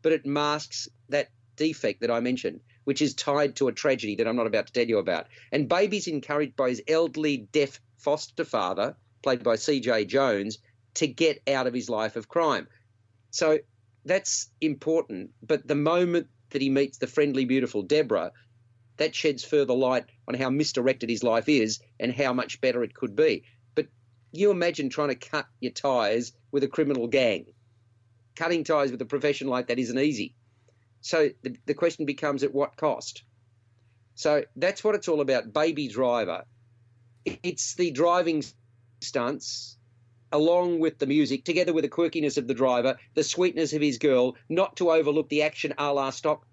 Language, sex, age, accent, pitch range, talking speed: English, male, 40-59, Australian, 120-150 Hz, 180 wpm